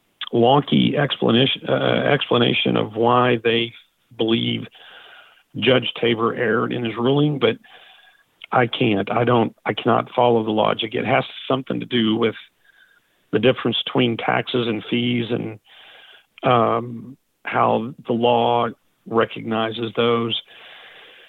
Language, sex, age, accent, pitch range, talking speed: English, male, 50-69, American, 115-130 Hz, 120 wpm